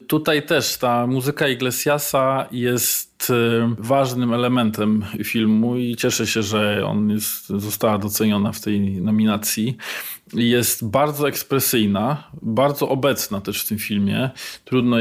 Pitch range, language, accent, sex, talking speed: 110-130 Hz, Polish, native, male, 120 wpm